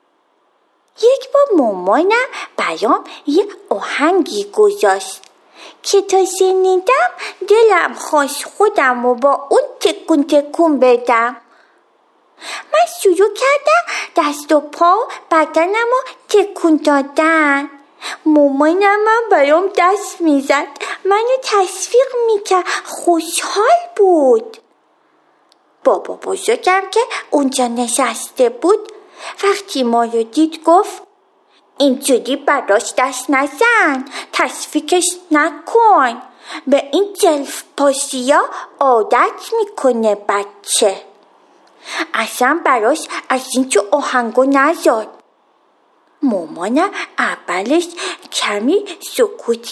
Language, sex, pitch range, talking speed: Persian, female, 280-400 Hz, 85 wpm